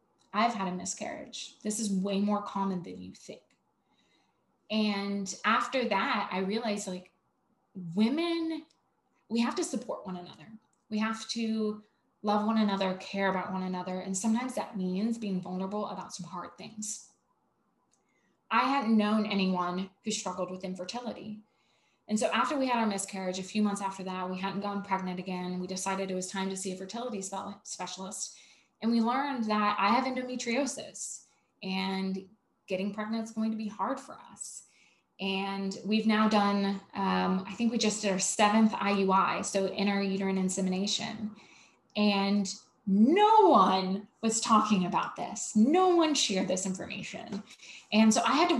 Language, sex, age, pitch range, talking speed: English, female, 20-39, 190-225 Hz, 160 wpm